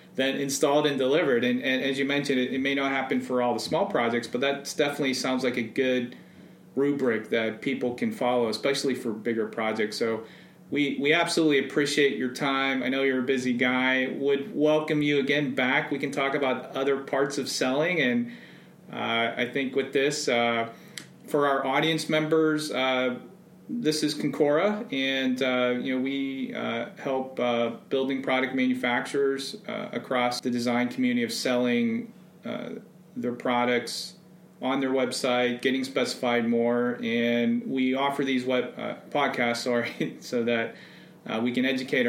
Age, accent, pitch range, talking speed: 30-49, American, 120-145 Hz, 170 wpm